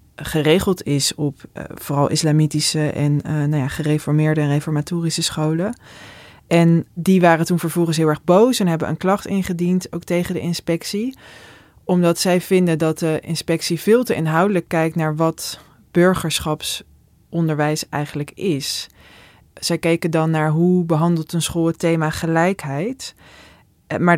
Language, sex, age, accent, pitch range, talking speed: Dutch, female, 20-39, Dutch, 150-170 Hz, 140 wpm